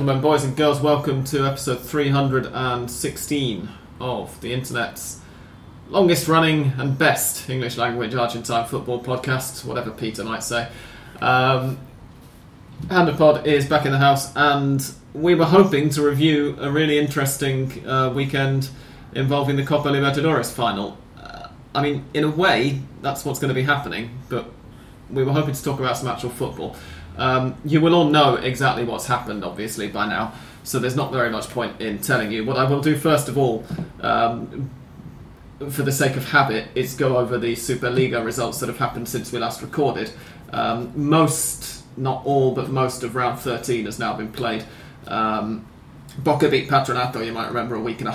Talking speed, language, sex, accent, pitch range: 170 wpm, English, male, British, 120-145 Hz